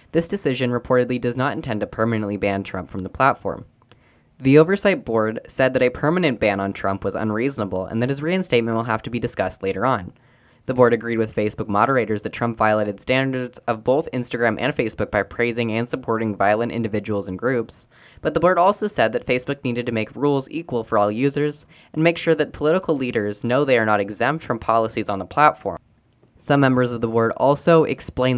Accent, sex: American, female